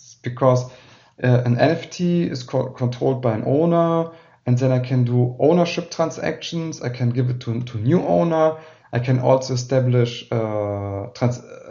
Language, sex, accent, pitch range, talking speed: English, male, German, 125-155 Hz, 160 wpm